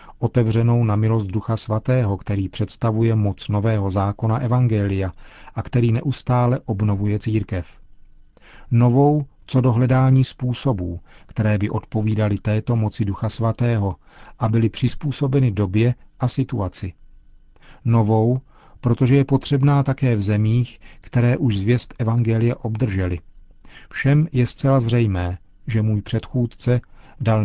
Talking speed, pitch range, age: 115 wpm, 105-125 Hz, 40-59